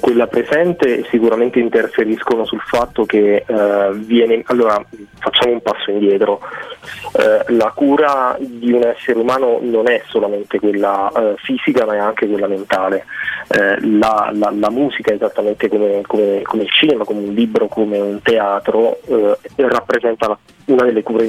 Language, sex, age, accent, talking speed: Italian, male, 30-49, native, 150 wpm